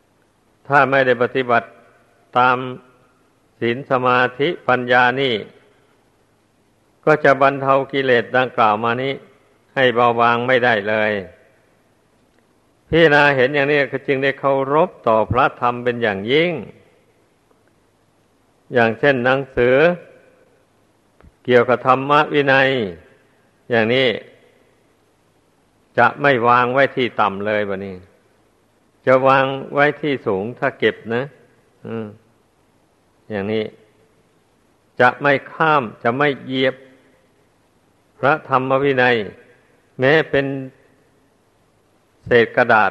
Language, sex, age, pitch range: Thai, male, 60-79, 115-135 Hz